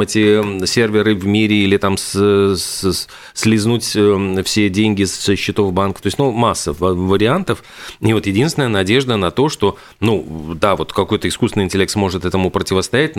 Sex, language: male, Russian